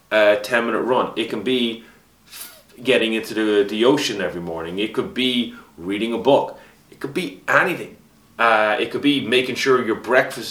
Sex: male